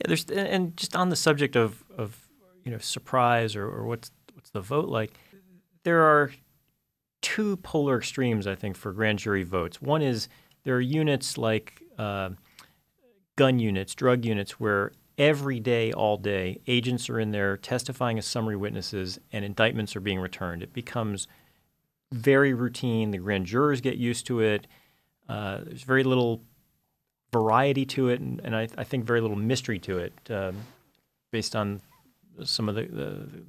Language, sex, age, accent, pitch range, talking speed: English, male, 40-59, American, 110-135 Hz, 170 wpm